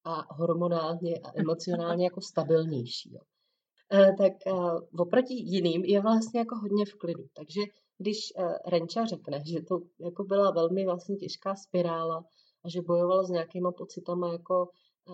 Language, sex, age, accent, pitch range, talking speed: Czech, female, 30-49, native, 165-185 Hz, 145 wpm